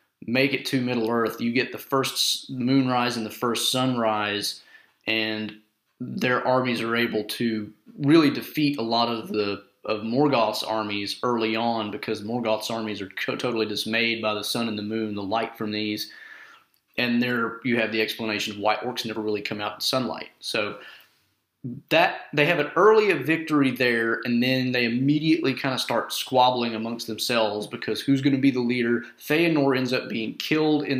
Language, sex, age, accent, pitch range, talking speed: English, male, 30-49, American, 110-125 Hz, 180 wpm